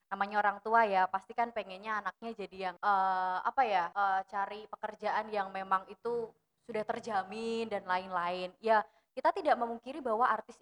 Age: 20-39